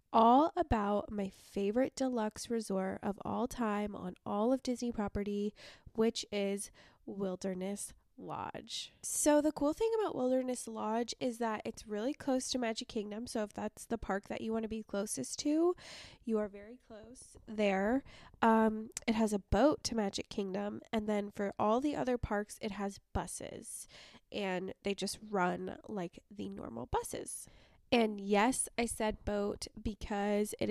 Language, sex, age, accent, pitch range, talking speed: English, female, 20-39, American, 205-240 Hz, 160 wpm